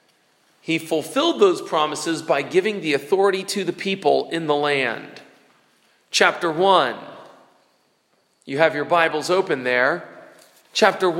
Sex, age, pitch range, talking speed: male, 40-59, 180-245 Hz, 125 wpm